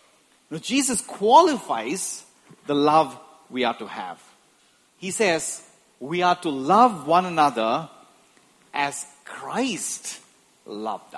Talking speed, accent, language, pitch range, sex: 100 wpm, Indian, English, 155-245 Hz, male